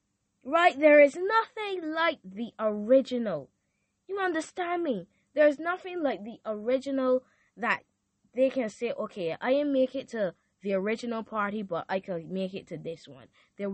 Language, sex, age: English, female, 10-29